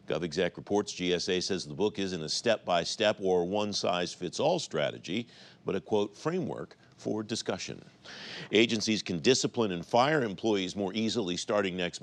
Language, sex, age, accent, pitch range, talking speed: English, male, 50-69, American, 95-115 Hz, 140 wpm